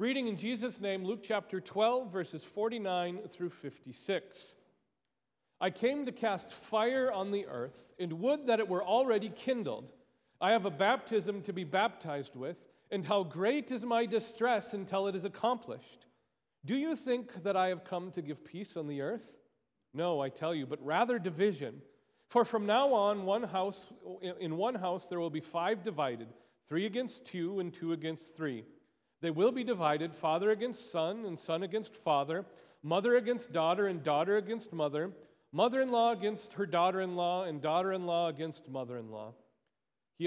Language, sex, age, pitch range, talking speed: English, male, 40-59, 165-225 Hz, 170 wpm